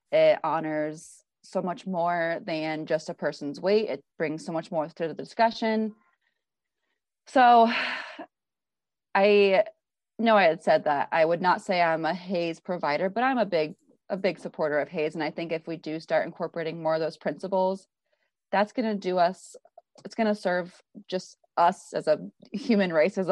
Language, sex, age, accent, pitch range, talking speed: English, female, 30-49, American, 160-205 Hz, 175 wpm